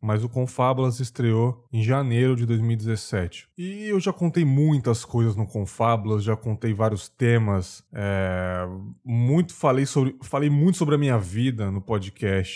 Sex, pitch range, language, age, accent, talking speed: male, 105-130 Hz, Portuguese, 20-39, Brazilian, 155 wpm